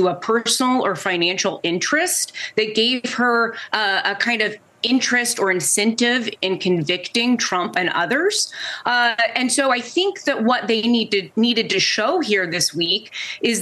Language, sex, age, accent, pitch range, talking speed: English, female, 20-39, American, 185-235 Hz, 160 wpm